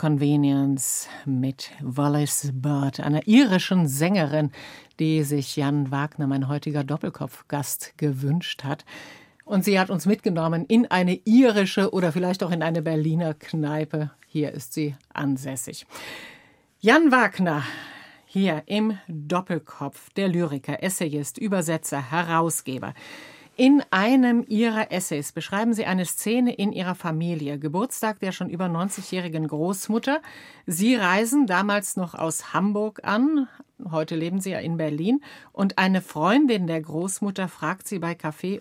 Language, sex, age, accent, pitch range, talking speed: German, female, 50-69, German, 155-205 Hz, 130 wpm